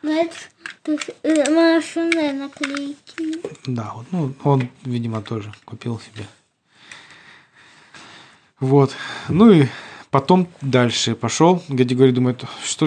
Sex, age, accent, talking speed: male, 20-39, native, 85 wpm